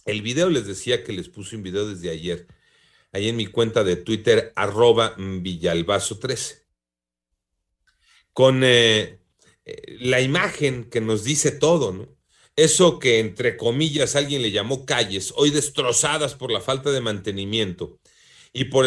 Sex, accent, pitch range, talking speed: male, Mexican, 115-170 Hz, 145 wpm